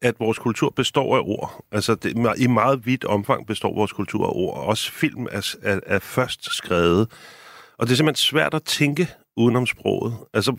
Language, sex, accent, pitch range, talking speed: Danish, male, native, 115-145 Hz, 200 wpm